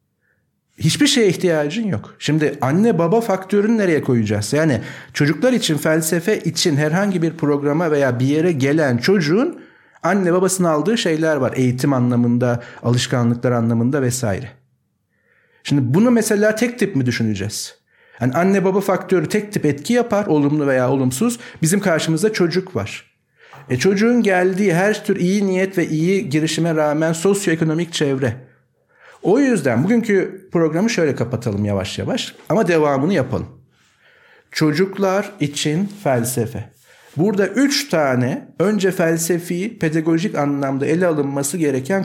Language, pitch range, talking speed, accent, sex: Turkish, 140-195 Hz, 130 wpm, native, male